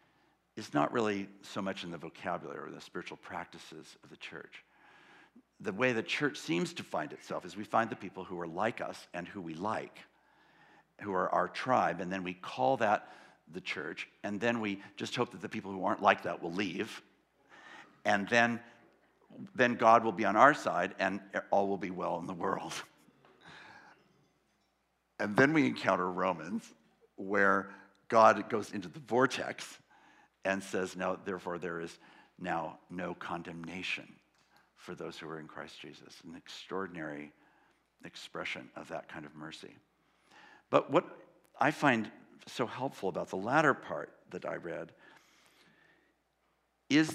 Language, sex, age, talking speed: English, male, 60-79, 160 wpm